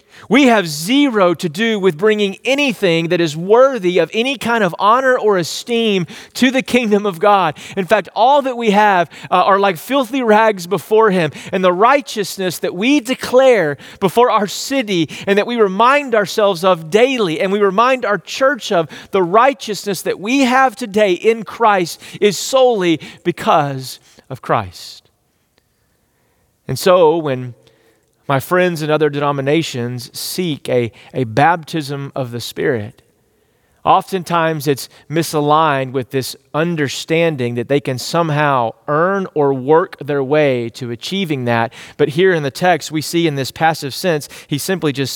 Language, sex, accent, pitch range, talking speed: English, male, American, 145-200 Hz, 155 wpm